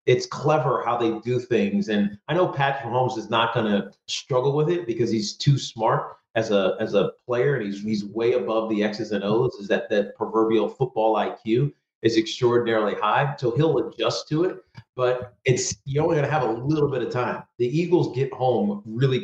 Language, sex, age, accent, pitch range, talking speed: English, male, 40-59, American, 115-140 Hz, 205 wpm